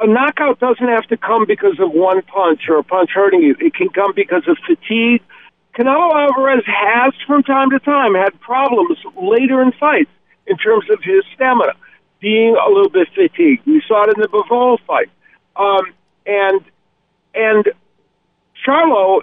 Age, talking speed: 50-69, 170 wpm